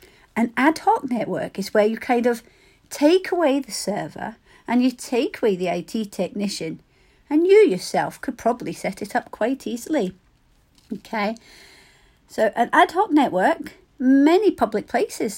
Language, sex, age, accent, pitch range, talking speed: English, female, 40-59, British, 205-270 Hz, 150 wpm